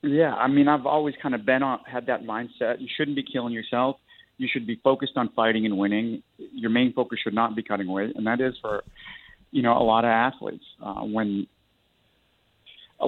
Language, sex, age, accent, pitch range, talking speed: English, male, 50-69, American, 110-135 Hz, 210 wpm